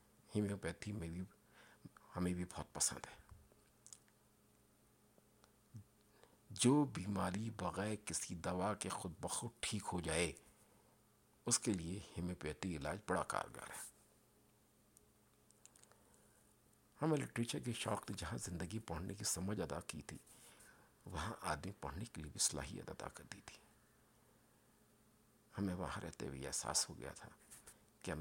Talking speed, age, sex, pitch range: 125 wpm, 50-69, male, 90-105 Hz